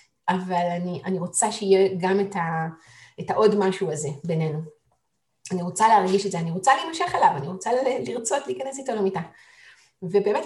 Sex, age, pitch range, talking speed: female, 30-49, 180-220 Hz, 165 wpm